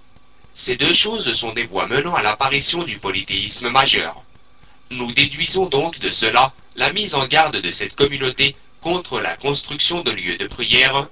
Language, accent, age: French, French, 40-59